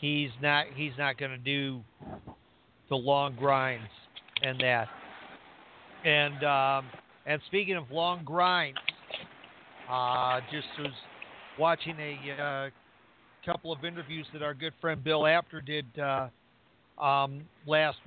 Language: English